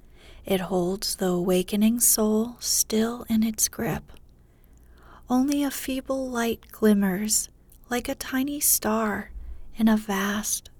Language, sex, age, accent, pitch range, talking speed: English, female, 40-59, American, 185-220 Hz, 115 wpm